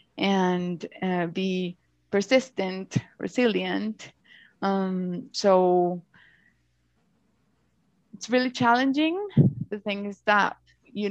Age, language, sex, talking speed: 20-39, English, female, 80 wpm